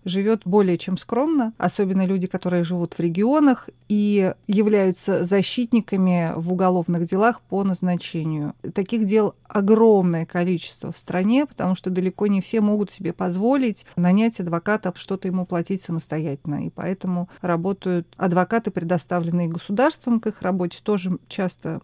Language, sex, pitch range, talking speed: Russian, female, 180-225 Hz, 135 wpm